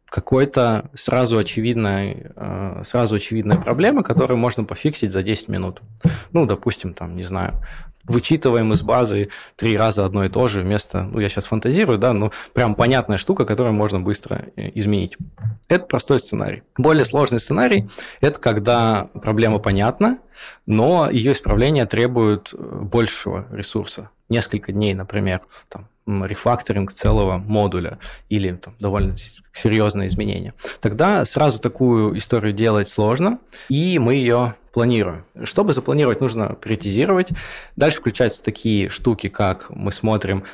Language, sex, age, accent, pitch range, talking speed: Russian, male, 20-39, native, 100-120 Hz, 130 wpm